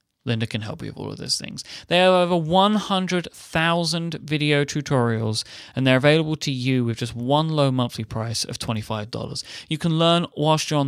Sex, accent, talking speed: male, British, 190 wpm